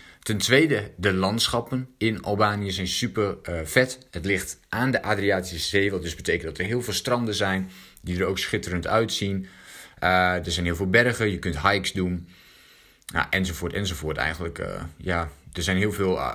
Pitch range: 90-110 Hz